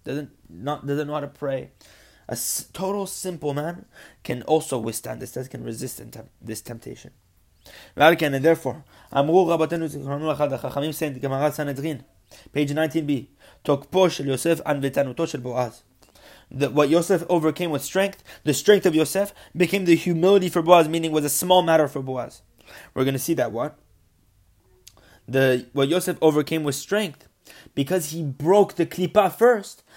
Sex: male